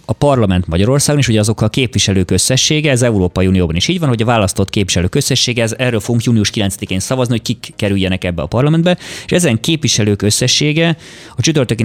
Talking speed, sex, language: 190 wpm, male, Hungarian